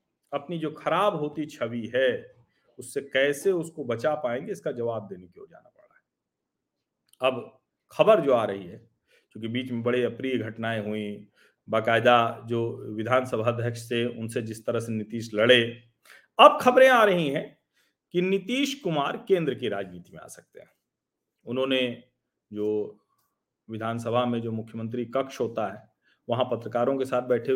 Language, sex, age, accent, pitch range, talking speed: Hindi, male, 40-59, native, 115-175 Hz, 155 wpm